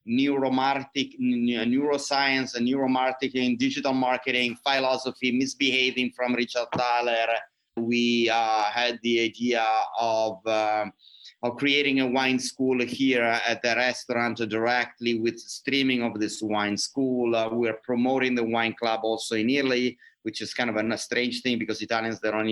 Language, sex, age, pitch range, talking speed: English, male, 30-49, 115-130 Hz, 145 wpm